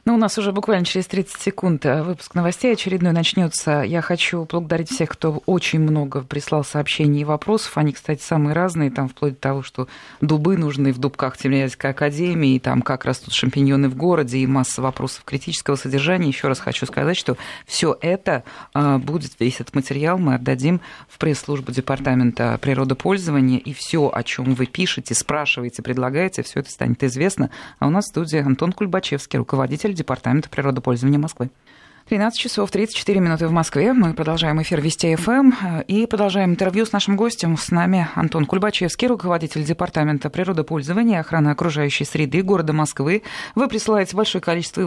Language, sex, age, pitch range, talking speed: Russian, female, 20-39, 140-190 Hz, 165 wpm